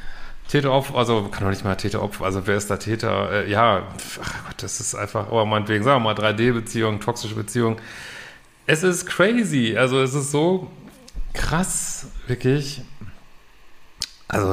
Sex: male